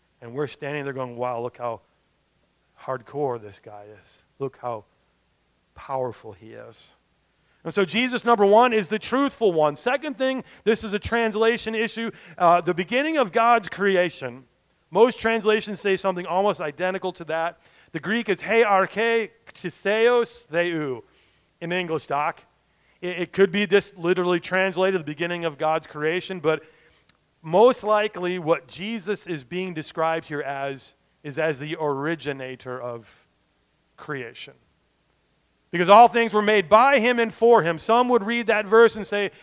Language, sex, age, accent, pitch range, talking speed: English, male, 40-59, American, 145-215 Hz, 150 wpm